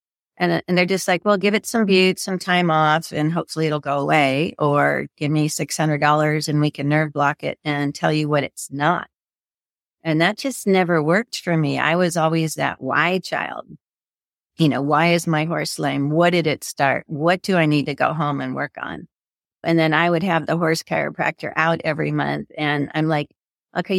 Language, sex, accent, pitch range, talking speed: English, female, American, 150-175 Hz, 210 wpm